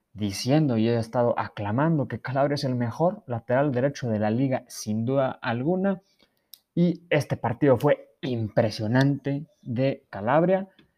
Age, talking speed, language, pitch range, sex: 30-49, 135 wpm, Spanish, 110-135 Hz, male